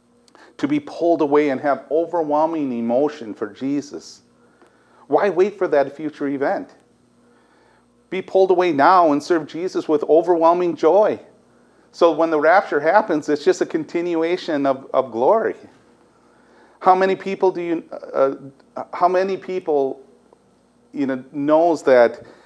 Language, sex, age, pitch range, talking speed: English, male, 40-59, 125-165 Hz, 135 wpm